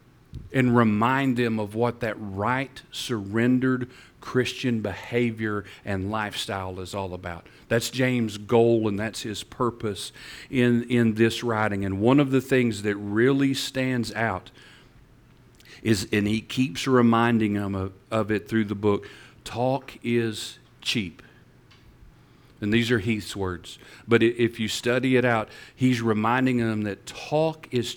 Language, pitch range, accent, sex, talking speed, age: English, 105-125 Hz, American, male, 145 wpm, 40-59